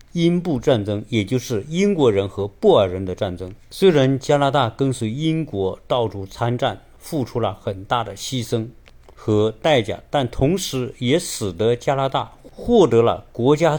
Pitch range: 105-145 Hz